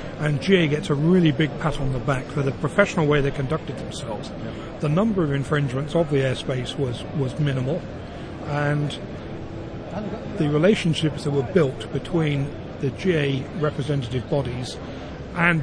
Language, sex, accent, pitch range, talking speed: English, male, British, 135-155 Hz, 150 wpm